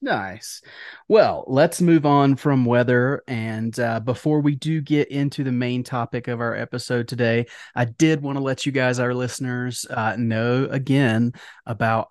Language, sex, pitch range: English, male, 120-145 Hz